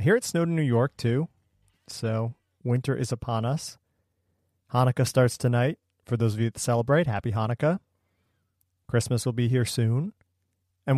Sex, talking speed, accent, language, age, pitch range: male, 155 wpm, American, English, 40-59, 115-135 Hz